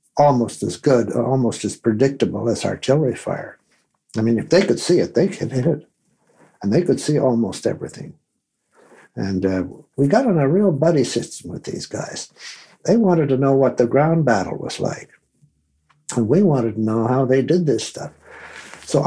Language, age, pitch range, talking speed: English, 60-79, 120-160 Hz, 185 wpm